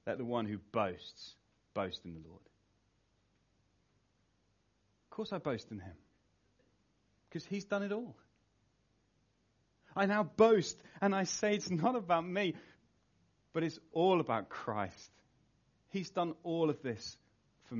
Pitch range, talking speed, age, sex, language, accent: 105-155 Hz, 140 wpm, 30-49, male, English, British